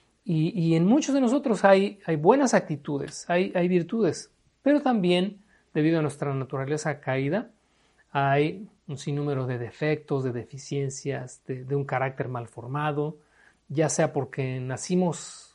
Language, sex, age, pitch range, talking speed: Spanish, male, 40-59, 145-190 Hz, 145 wpm